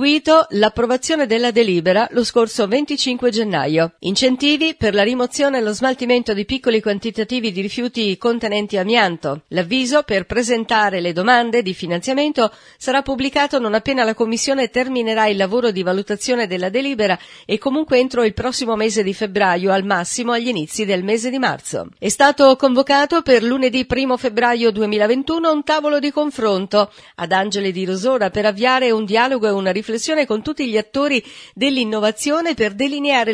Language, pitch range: Italian, 205-260 Hz